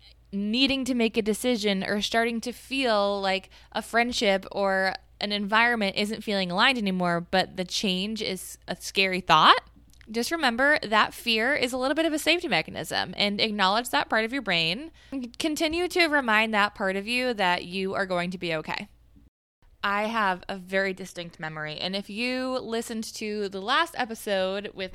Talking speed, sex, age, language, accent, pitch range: 180 wpm, female, 20-39, English, American, 185-235 Hz